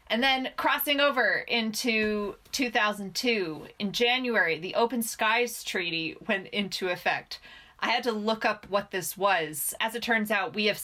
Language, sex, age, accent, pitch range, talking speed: English, female, 20-39, American, 175-230 Hz, 160 wpm